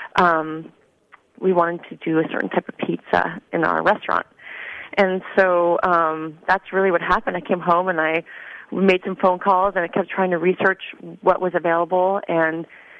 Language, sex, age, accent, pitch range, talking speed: English, female, 30-49, American, 170-190 Hz, 180 wpm